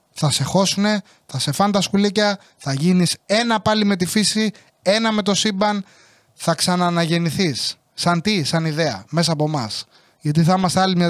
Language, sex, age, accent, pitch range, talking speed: English, male, 20-39, Greek, 160-205 Hz, 175 wpm